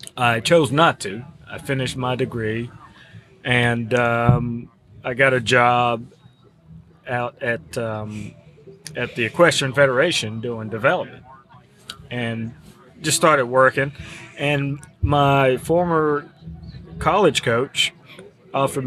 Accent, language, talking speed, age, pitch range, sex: American, English, 105 wpm, 30-49, 120-150 Hz, male